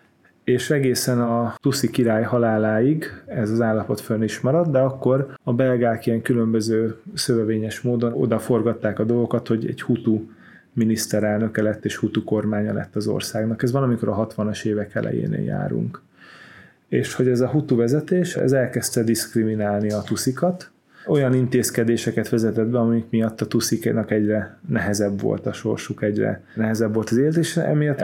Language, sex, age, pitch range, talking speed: Hungarian, male, 30-49, 110-130 Hz, 155 wpm